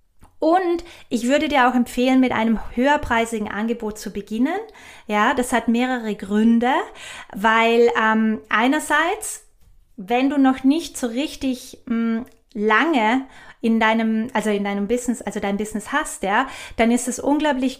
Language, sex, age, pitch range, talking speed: German, female, 20-39, 220-270 Hz, 140 wpm